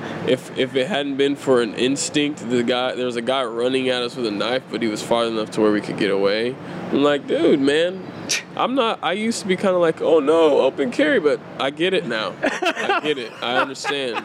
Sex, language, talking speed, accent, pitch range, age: male, English, 245 wpm, American, 115-135 Hz, 20-39